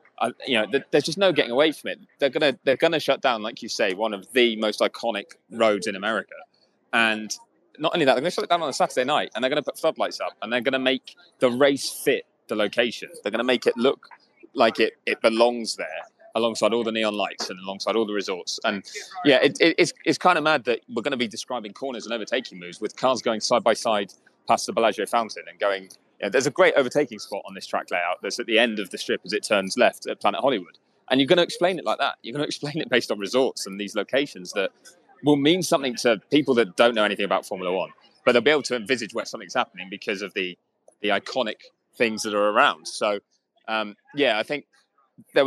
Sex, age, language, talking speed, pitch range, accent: male, 20-39, English, 240 wpm, 105-140 Hz, British